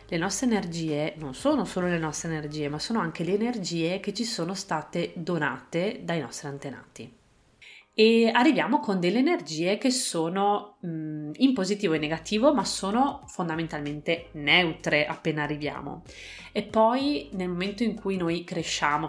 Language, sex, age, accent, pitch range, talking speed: Italian, female, 30-49, native, 155-205 Hz, 150 wpm